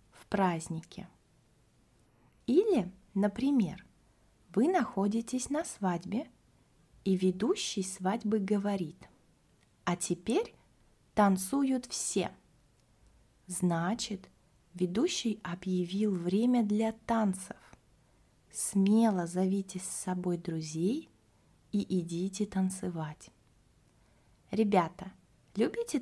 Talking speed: 70 wpm